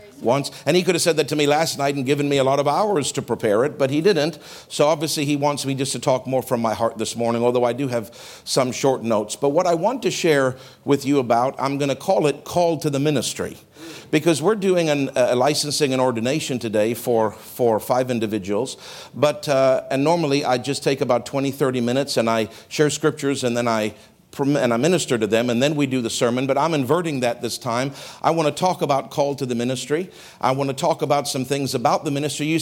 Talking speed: 240 wpm